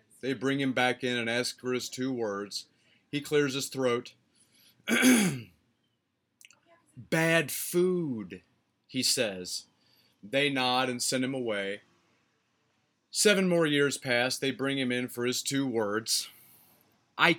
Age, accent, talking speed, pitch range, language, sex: 30-49, American, 135 wpm, 110-145 Hz, English, male